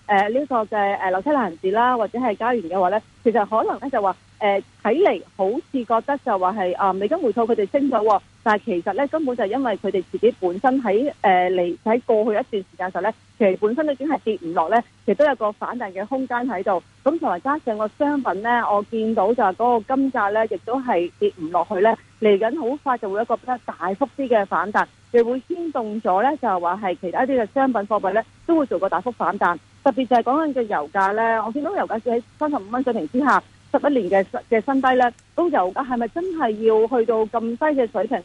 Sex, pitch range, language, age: female, 200-255 Hz, Chinese, 40-59